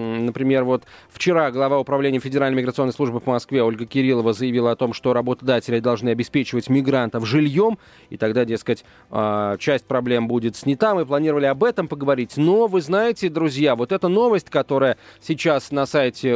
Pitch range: 125-180 Hz